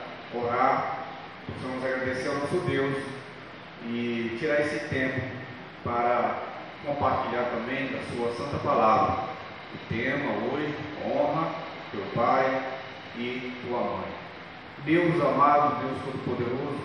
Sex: male